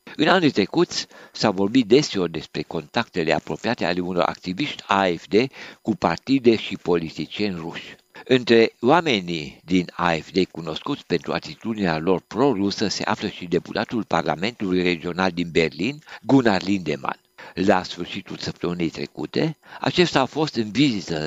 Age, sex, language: 60-79, male, Romanian